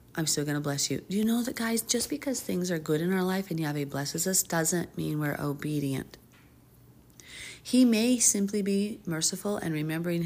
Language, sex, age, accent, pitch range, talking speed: English, female, 40-59, American, 145-190 Hz, 200 wpm